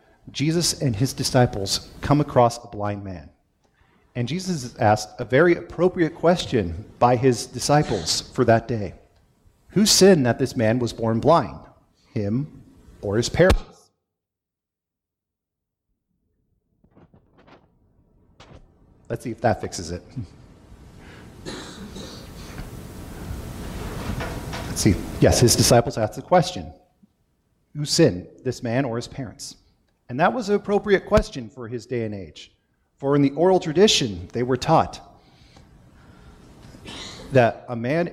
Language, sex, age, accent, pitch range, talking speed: English, male, 40-59, American, 105-140 Hz, 125 wpm